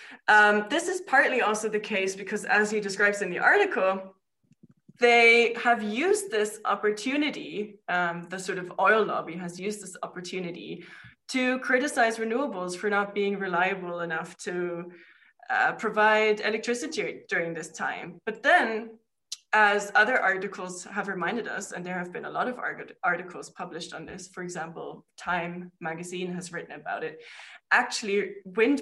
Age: 20-39